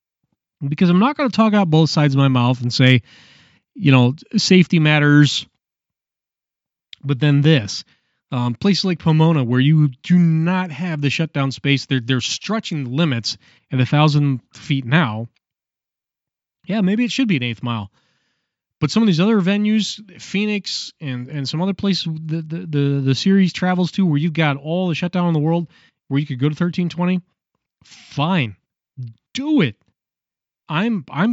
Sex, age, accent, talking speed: male, 30-49, American, 170 wpm